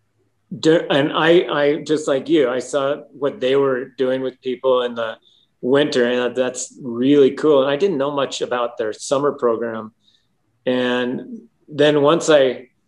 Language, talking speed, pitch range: English, 160 wpm, 120-145 Hz